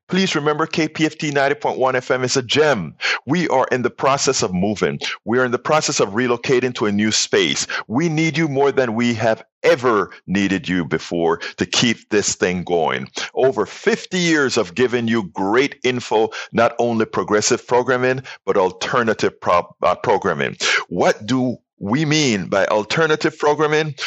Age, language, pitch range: 50-69, English, 105-155 Hz